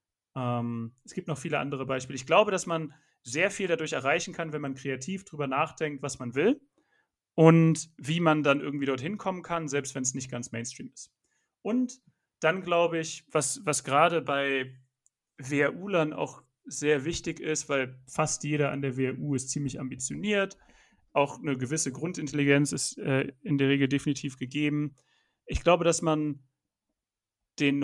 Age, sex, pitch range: 40-59, male, 130-160 Hz